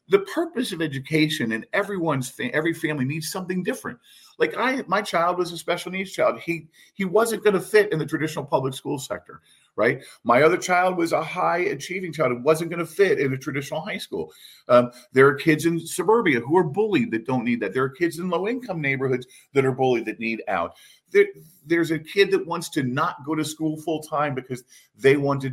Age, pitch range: 40-59, 120-175 Hz